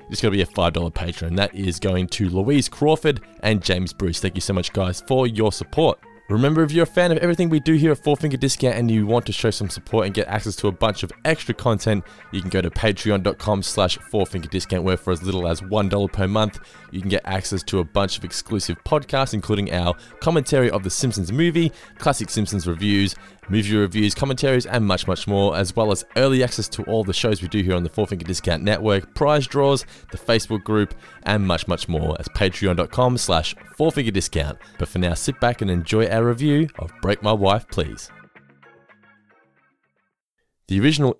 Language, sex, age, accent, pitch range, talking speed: English, male, 20-39, Australian, 90-115 Hz, 210 wpm